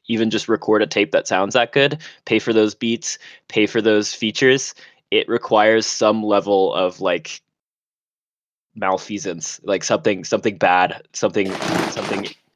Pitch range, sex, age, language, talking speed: 100-115 Hz, male, 10-29, English, 145 wpm